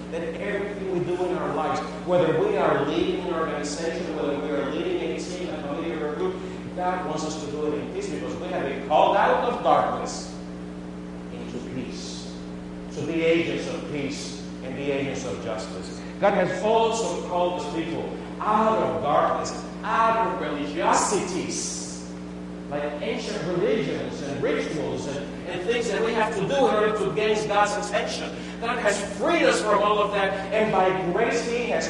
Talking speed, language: 180 wpm, English